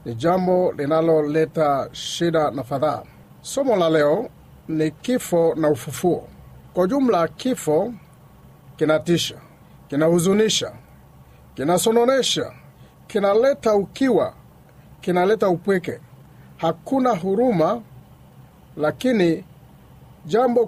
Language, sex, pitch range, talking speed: Swahili, male, 155-215 Hz, 80 wpm